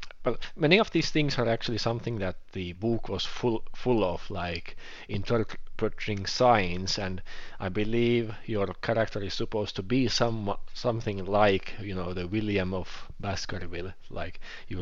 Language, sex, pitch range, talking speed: English, male, 95-110 Hz, 155 wpm